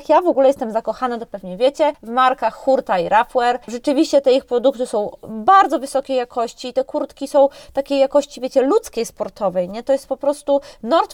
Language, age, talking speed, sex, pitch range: Polish, 20-39, 190 wpm, female, 225-280 Hz